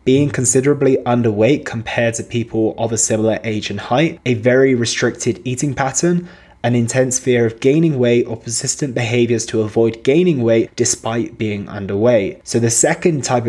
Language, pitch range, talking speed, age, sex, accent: English, 110-130 Hz, 165 wpm, 20-39, male, British